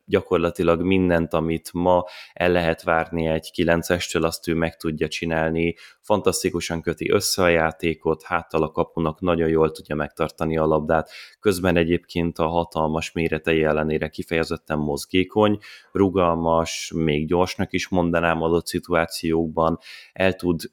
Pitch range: 80-90 Hz